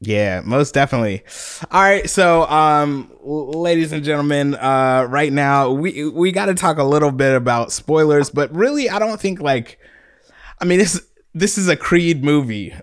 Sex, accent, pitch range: male, American, 125-155 Hz